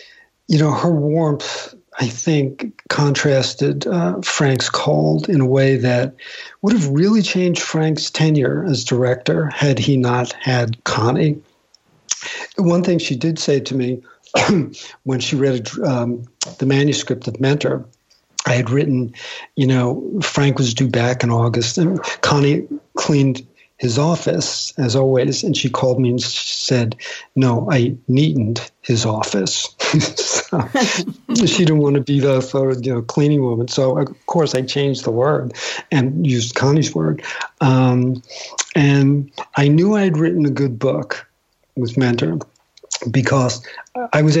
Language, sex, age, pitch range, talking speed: English, male, 60-79, 125-150 Hz, 145 wpm